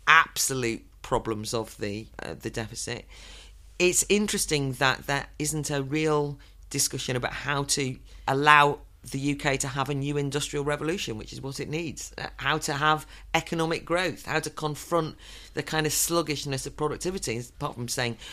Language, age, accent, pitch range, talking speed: English, 40-59, British, 120-160 Hz, 165 wpm